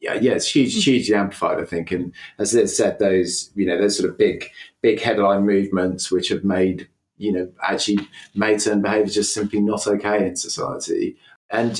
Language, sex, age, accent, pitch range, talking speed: English, male, 30-49, British, 85-105 Hz, 195 wpm